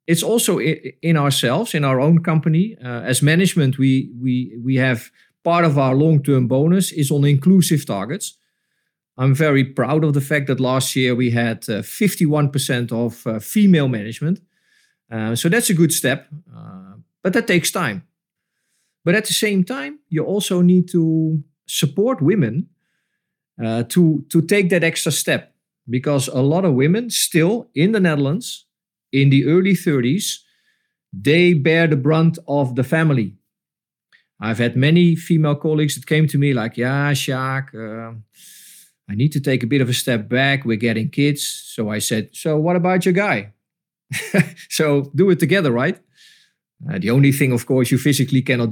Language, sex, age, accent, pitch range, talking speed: English, male, 40-59, Dutch, 130-175 Hz, 170 wpm